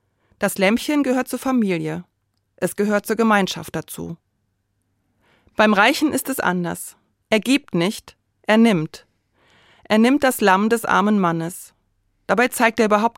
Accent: German